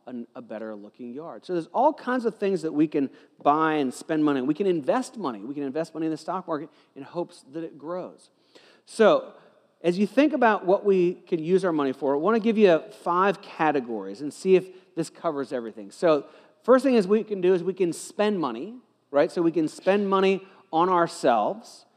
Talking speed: 215 wpm